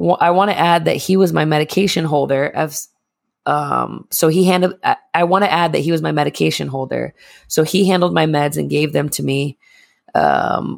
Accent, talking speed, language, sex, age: American, 205 wpm, English, female, 20-39